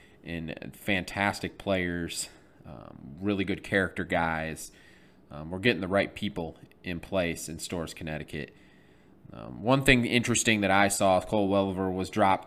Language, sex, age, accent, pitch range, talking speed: English, male, 30-49, American, 90-105 Hz, 145 wpm